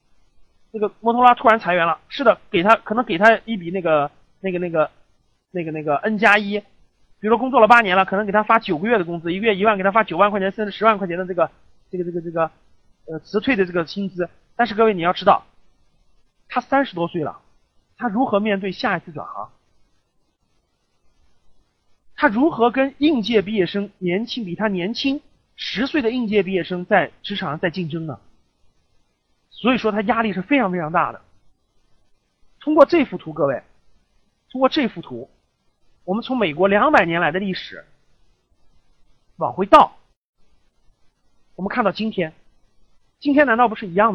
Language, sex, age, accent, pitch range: Chinese, male, 30-49, native, 170-235 Hz